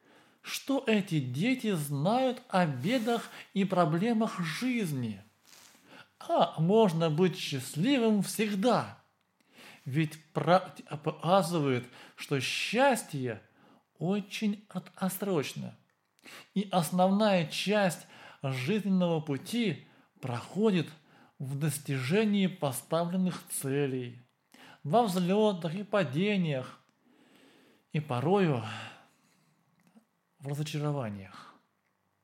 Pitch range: 145-210 Hz